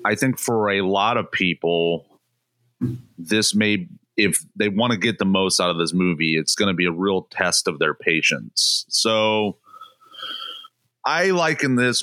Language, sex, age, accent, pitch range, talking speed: English, male, 30-49, American, 90-120 Hz, 170 wpm